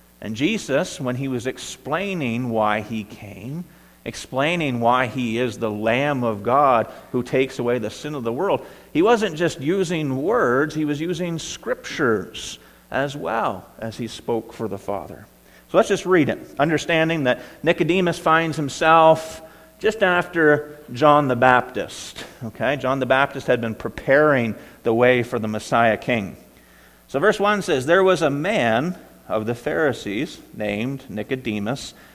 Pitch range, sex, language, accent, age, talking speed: 105-150 Hz, male, English, American, 50-69, 155 wpm